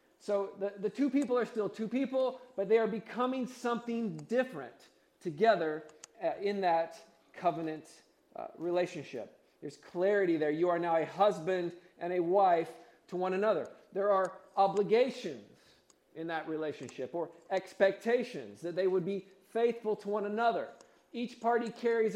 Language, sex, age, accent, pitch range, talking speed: English, male, 40-59, American, 165-215 Hz, 145 wpm